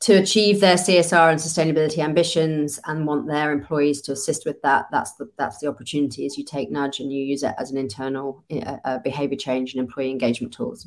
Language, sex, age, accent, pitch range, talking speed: English, female, 30-49, British, 135-150 Hz, 210 wpm